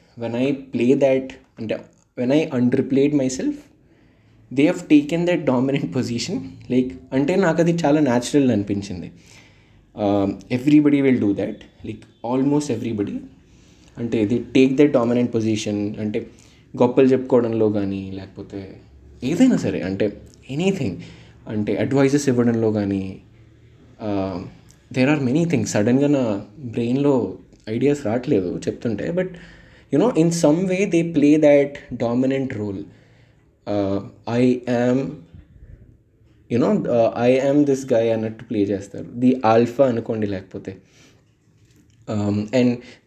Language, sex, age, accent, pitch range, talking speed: Telugu, male, 20-39, native, 105-140 Hz, 125 wpm